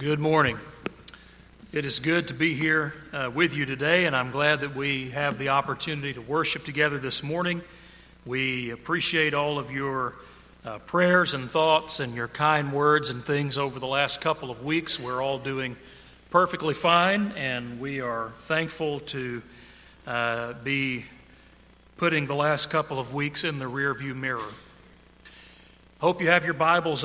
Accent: American